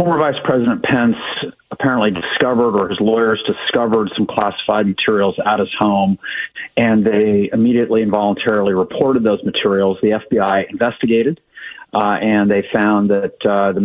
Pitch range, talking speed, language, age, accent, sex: 100-125 Hz, 145 wpm, English, 50-69, American, male